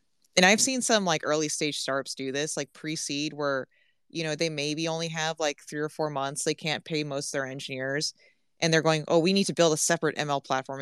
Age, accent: 20-39, American